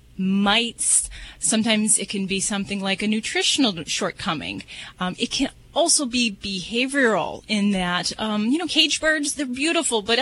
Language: English